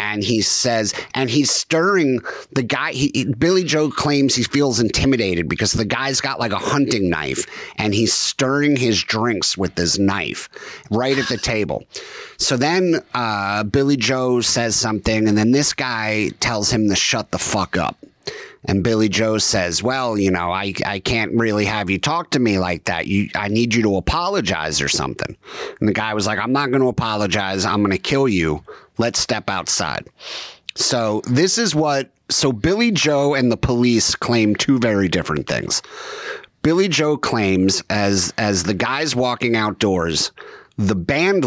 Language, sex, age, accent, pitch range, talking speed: English, male, 30-49, American, 100-130 Hz, 180 wpm